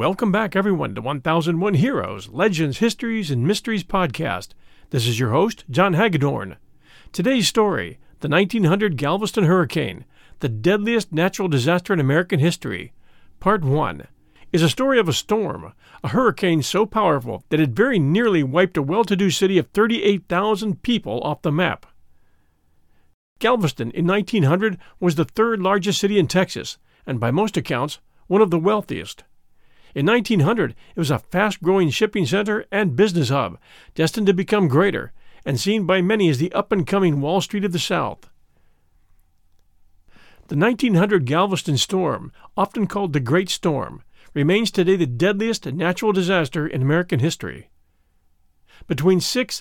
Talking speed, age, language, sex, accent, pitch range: 145 wpm, 50-69, English, male, American, 140-200 Hz